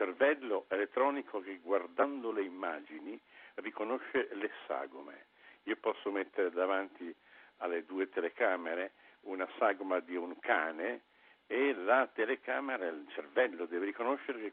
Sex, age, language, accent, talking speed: male, 60-79, Italian, native, 125 wpm